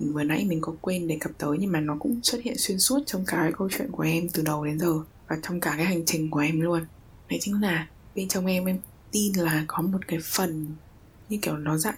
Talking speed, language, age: 265 wpm, Vietnamese, 20-39